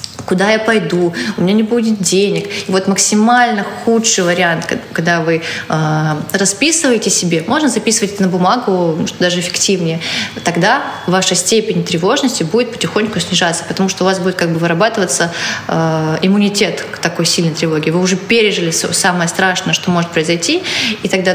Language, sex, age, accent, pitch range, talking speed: Russian, female, 20-39, native, 165-205 Hz, 155 wpm